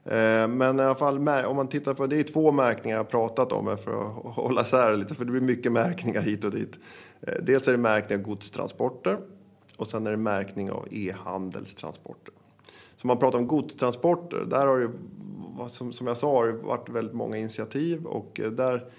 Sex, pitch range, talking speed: male, 105-130 Hz, 195 wpm